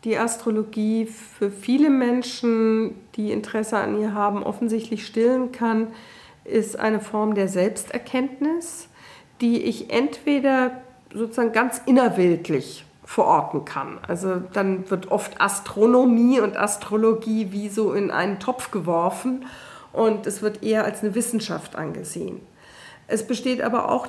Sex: female